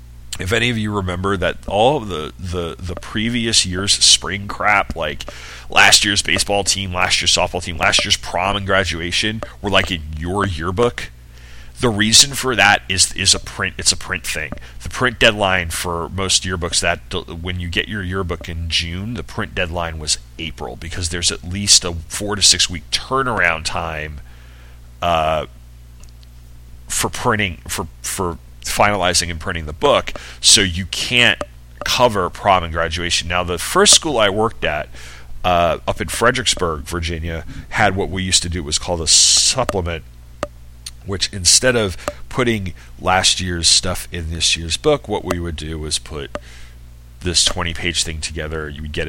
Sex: male